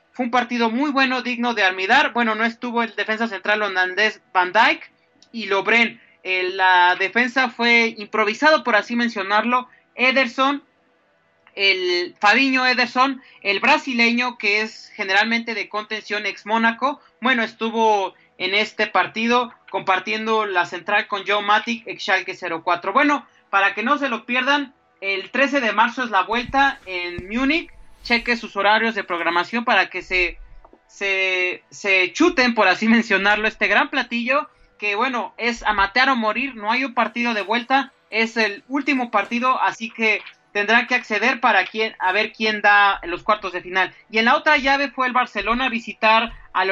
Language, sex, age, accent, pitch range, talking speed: Spanish, male, 30-49, Mexican, 200-255 Hz, 170 wpm